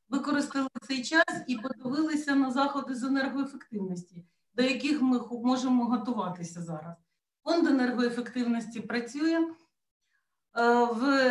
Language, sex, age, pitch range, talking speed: Ukrainian, female, 40-59, 225-280 Hz, 100 wpm